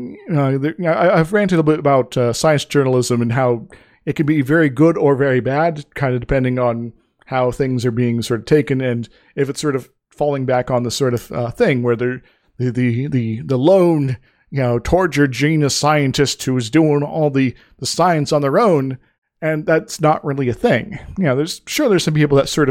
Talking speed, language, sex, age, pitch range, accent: 220 wpm, English, male, 40-59, 125-160 Hz, American